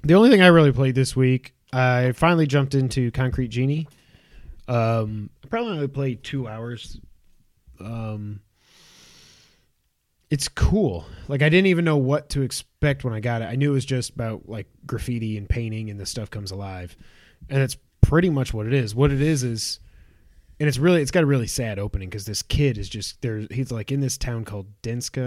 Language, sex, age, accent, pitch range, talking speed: English, male, 20-39, American, 100-130 Hz, 195 wpm